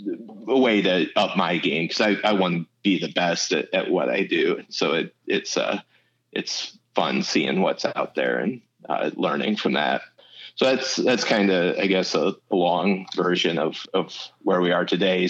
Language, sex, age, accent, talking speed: English, male, 30-49, American, 200 wpm